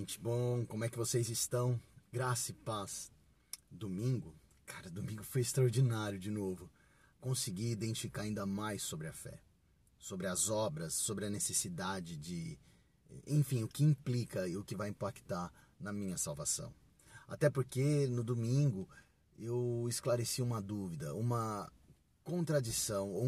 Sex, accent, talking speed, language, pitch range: male, Brazilian, 135 wpm, Portuguese, 105-140 Hz